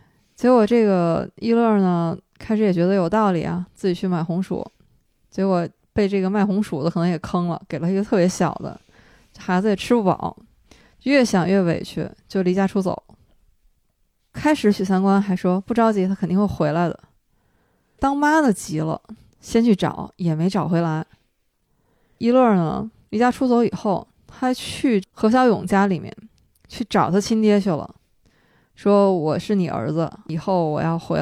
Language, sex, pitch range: Chinese, female, 175-215 Hz